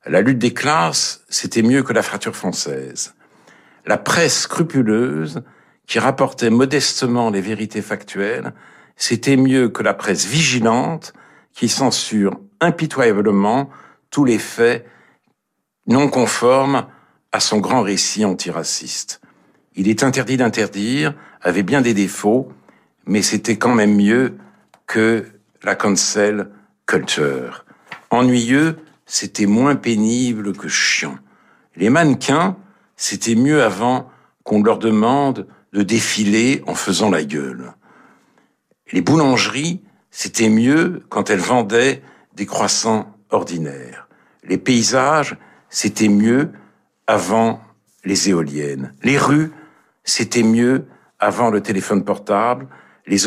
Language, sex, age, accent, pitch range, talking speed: French, male, 60-79, French, 105-130 Hz, 115 wpm